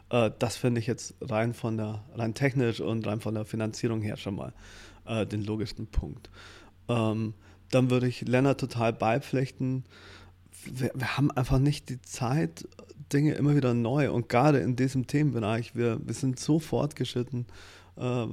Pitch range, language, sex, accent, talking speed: 110-130 Hz, German, male, German, 165 wpm